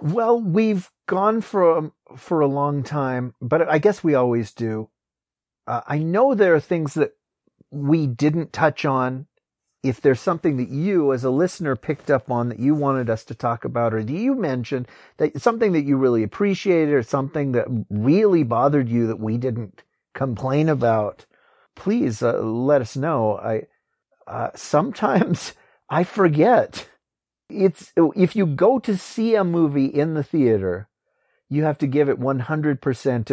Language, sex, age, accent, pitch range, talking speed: English, male, 40-59, American, 115-150 Hz, 165 wpm